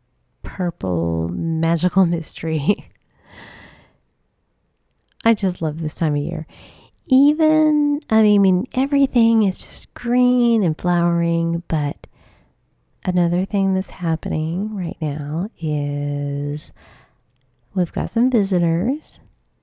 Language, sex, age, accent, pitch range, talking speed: English, female, 30-49, American, 155-200 Hz, 95 wpm